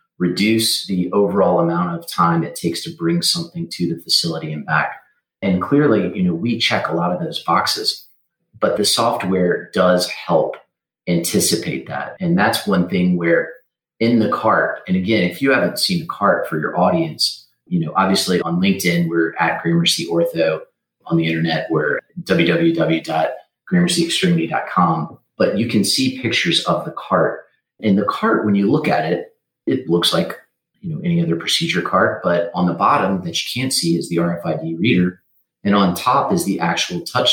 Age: 30-49